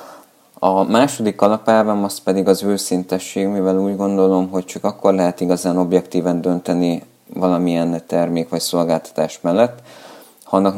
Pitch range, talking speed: 90-105 Hz, 130 wpm